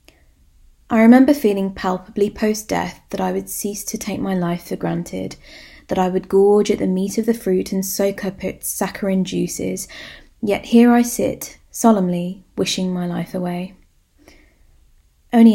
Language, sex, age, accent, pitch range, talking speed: English, female, 20-39, British, 170-215 Hz, 160 wpm